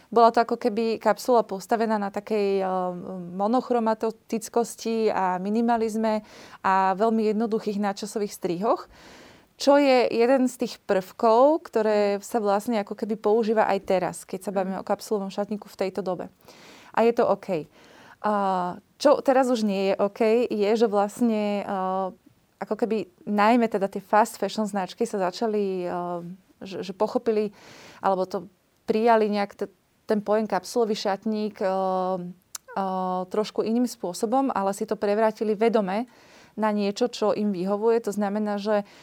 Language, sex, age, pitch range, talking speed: Slovak, female, 20-39, 195-225 Hz, 140 wpm